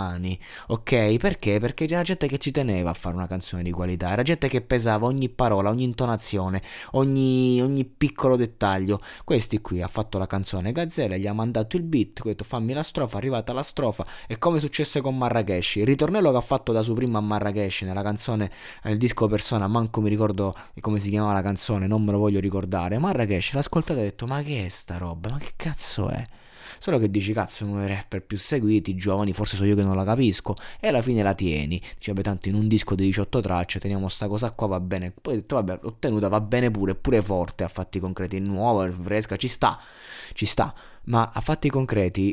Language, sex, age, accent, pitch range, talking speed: Italian, male, 20-39, native, 95-120 Hz, 220 wpm